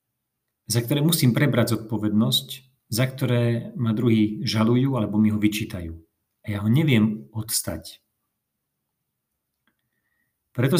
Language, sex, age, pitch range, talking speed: Slovak, male, 40-59, 105-130 Hz, 110 wpm